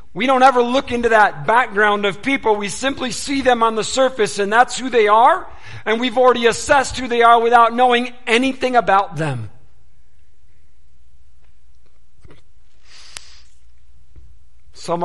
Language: English